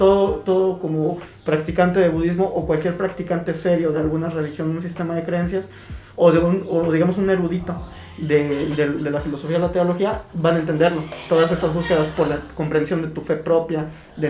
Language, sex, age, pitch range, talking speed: Spanish, male, 20-39, 150-175 Hz, 195 wpm